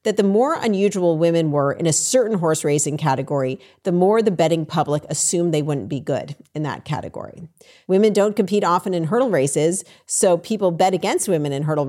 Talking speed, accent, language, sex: 195 wpm, American, English, female